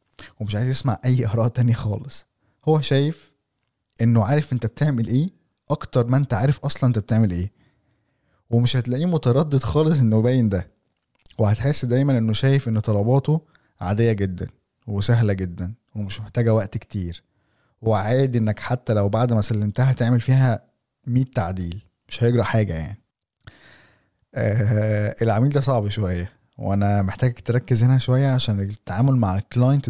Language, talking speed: Arabic, 145 wpm